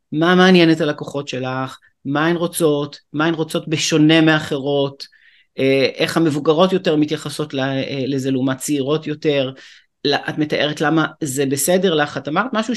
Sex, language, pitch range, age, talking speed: male, English, 140-175 Hz, 30-49, 145 wpm